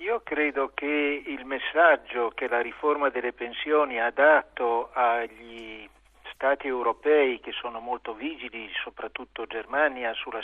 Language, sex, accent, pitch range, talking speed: Italian, male, native, 115-145 Hz, 125 wpm